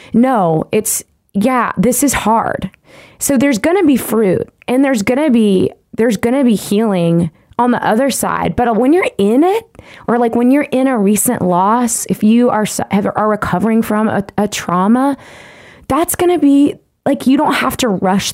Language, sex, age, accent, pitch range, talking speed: English, female, 20-39, American, 185-235 Hz, 190 wpm